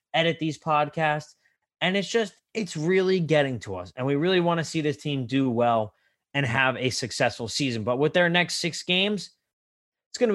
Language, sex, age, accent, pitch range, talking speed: English, male, 20-39, American, 120-150 Hz, 205 wpm